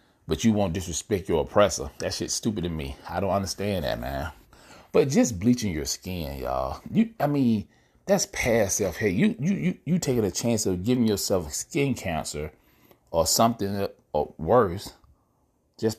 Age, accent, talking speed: 30-49, American, 175 wpm